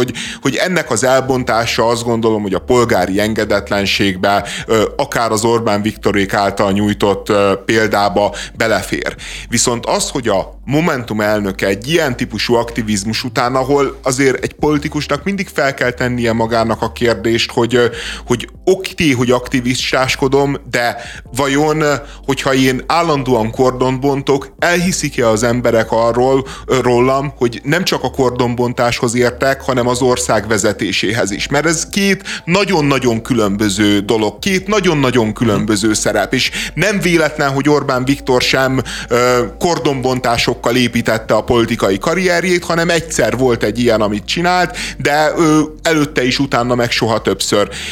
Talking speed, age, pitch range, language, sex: 130 wpm, 30-49, 115-145 Hz, Hungarian, male